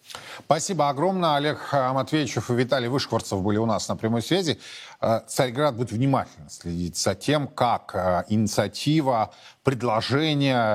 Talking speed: 125 wpm